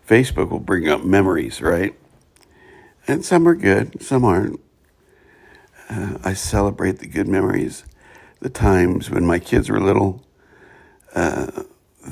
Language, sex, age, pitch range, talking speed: English, male, 60-79, 85-120 Hz, 130 wpm